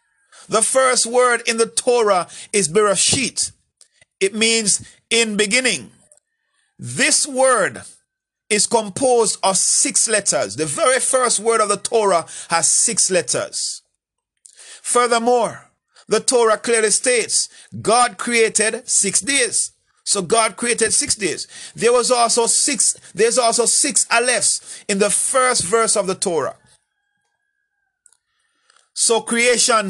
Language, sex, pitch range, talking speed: English, male, 190-250 Hz, 120 wpm